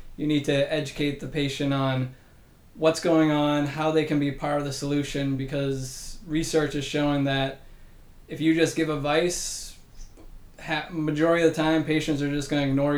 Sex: male